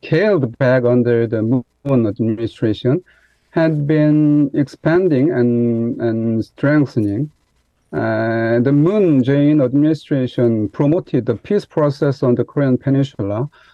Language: English